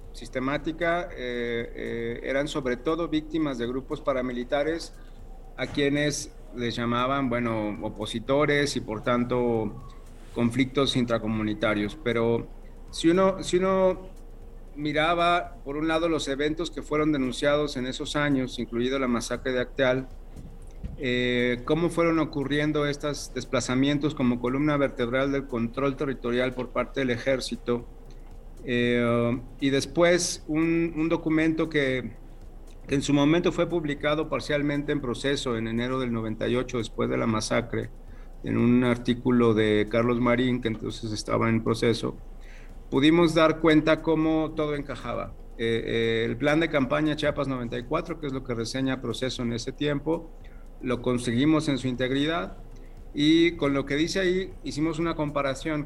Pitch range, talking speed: 120-150 Hz, 140 wpm